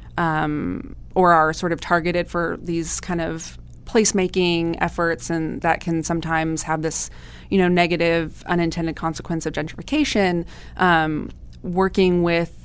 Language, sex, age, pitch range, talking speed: English, female, 20-39, 155-180 Hz, 135 wpm